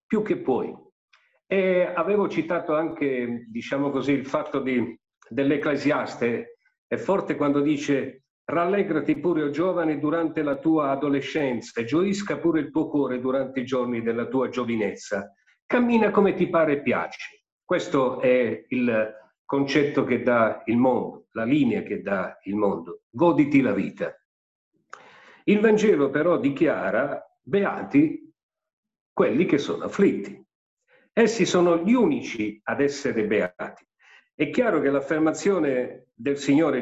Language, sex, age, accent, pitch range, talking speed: Italian, male, 50-69, native, 130-180 Hz, 130 wpm